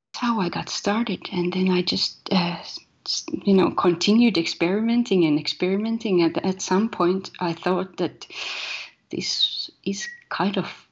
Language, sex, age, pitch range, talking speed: English, female, 30-49, 170-205 Hz, 145 wpm